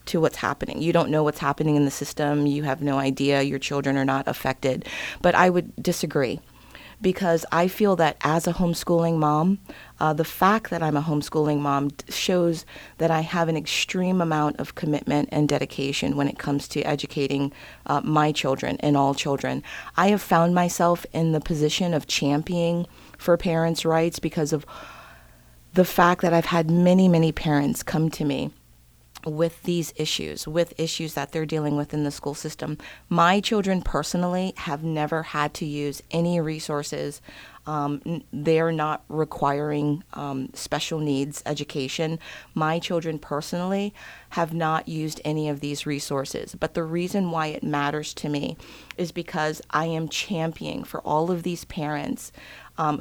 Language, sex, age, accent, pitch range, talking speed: English, female, 40-59, American, 145-170 Hz, 165 wpm